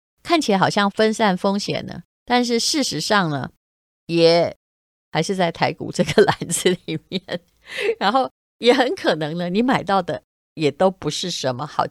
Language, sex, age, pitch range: Chinese, female, 30-49, 155-210 Hz